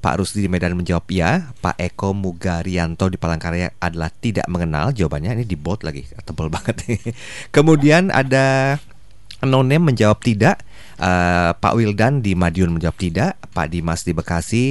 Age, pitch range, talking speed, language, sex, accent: 30-49, 85-110 Hz, 150 wpm, English, male, Indonesian